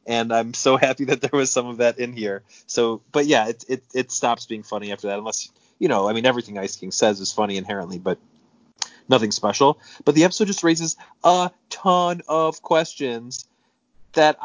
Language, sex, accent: English, male, American